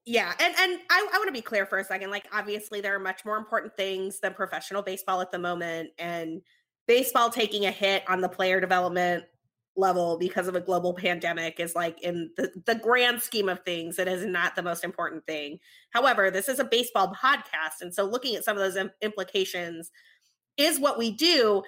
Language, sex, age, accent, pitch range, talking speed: English, female, 20-39, American, 180-240 Hz, 205 wpm